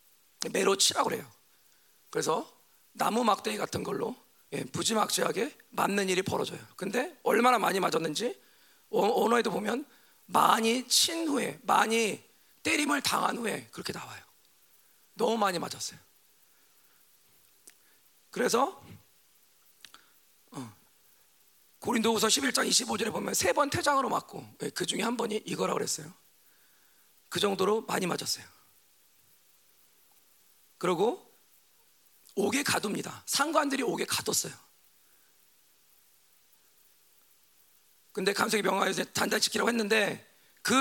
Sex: male